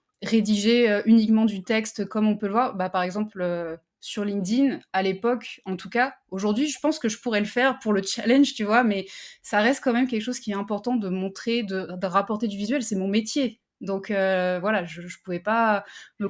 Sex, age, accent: female, 20-39, French